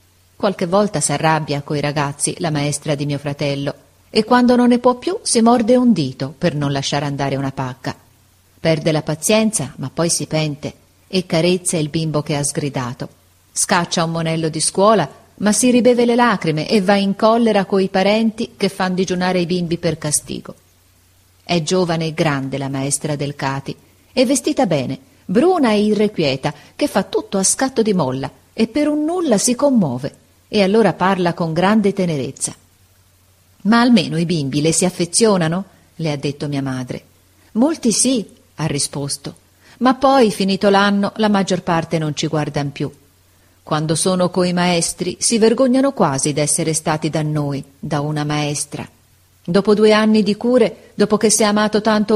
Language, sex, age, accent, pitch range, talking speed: Italian, female, 40-59, native, 145-210 Hz, 170 wpm